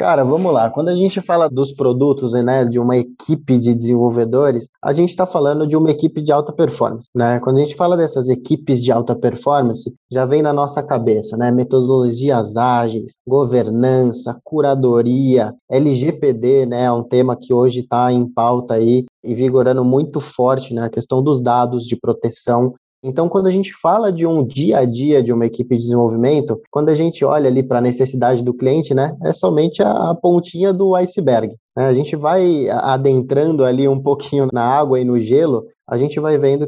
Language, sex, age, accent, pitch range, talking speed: Portuguese, male, 20-39, Brazilian, 125-155 Hz, 190 wpm